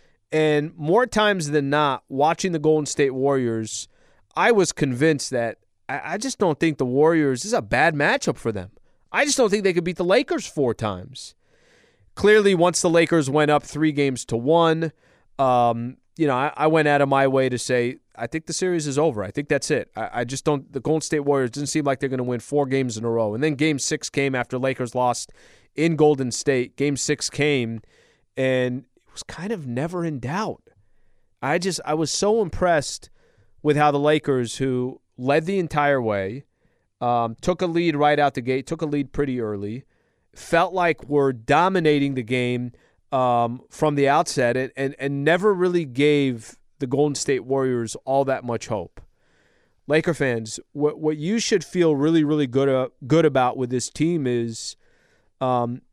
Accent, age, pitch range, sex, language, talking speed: American, 30-49, 125-160 Hz, male, English, 195 wpm